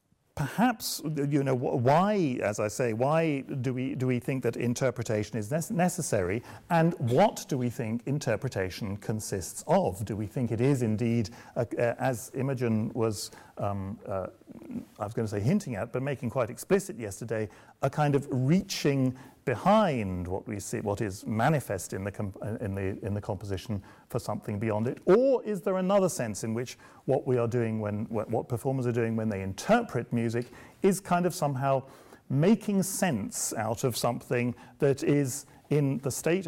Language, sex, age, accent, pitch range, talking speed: English, male, 40-59, British, 110-160 Hz, 180 wpm